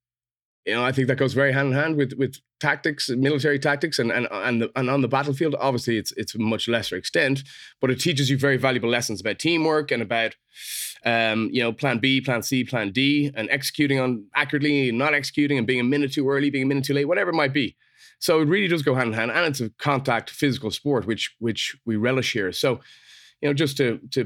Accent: Irish